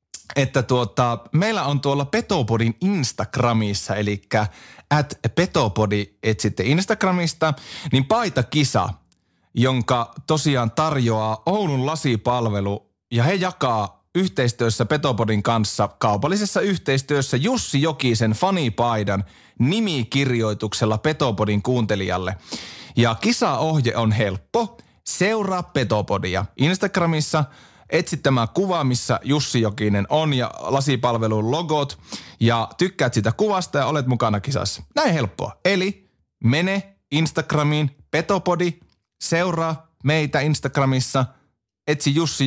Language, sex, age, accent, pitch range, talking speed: Finnish, male, 30-49, native, 110-160 Hz, 100 wpm